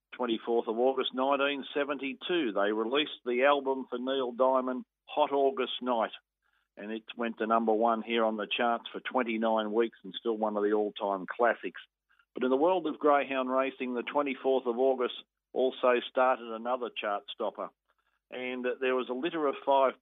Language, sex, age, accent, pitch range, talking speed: English, male, 50-69, Australian, 110-130 Hz, 170 wpm